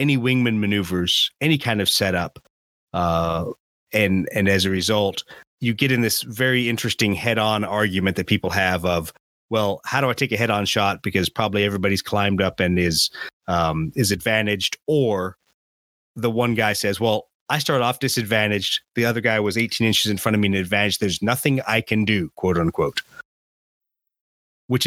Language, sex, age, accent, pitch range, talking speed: English, male, 30-49, American, 95-120 Hz, 175 wpm